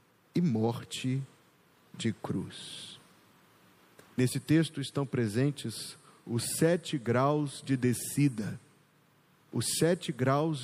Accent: Brazilian